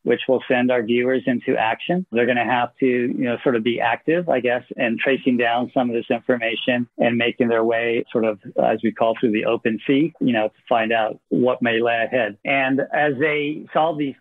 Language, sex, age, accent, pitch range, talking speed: English, male, 50-69, American, 115-135 Hz, 230 wpm